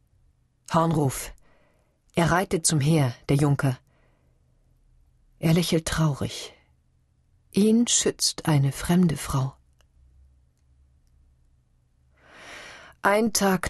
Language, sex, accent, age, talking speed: German, female, German, 50-69, 75 wpm